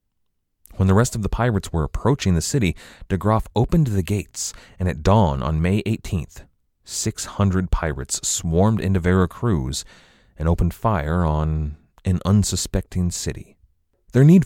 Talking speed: 145 wpm